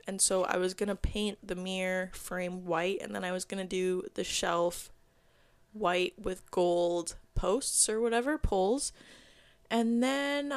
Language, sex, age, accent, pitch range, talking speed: English, female, 20-39, American, 185-225 Hz, 165 wpm